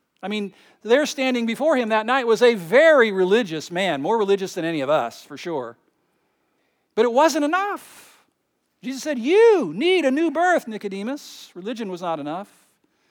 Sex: male